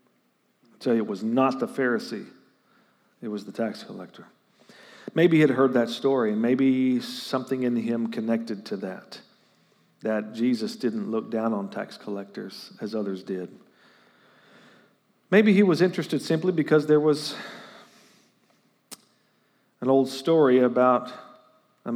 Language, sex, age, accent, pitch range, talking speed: English, male, 40-59, American, 110-130 Hz, 130 wpm